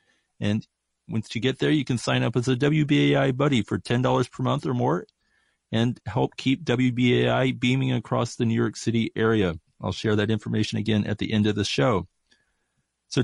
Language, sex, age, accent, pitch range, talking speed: English, male, 40-59, American, 115-135 Hz, 190 wpm